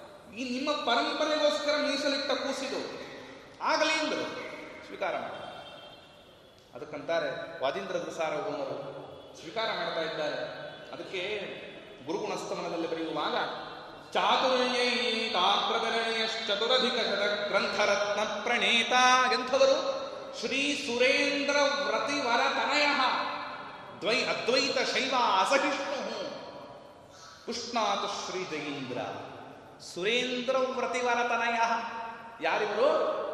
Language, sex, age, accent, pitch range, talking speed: Kannada, male, 30-49, native, 205-260 Hz, 65 wpm